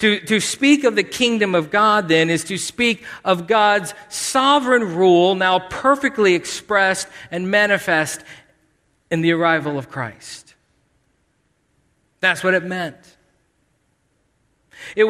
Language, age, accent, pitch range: English, 40-59, American, 185-270 Hz